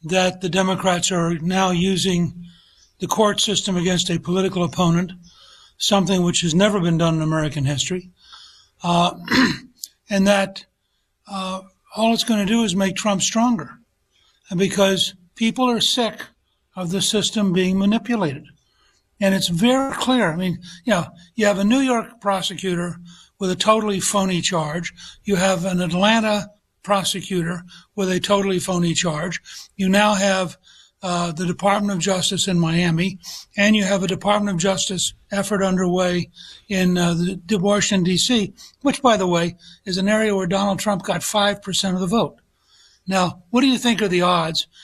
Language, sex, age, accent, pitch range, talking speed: English, male, 60-79, American, 180-205 Hz, 165 wpm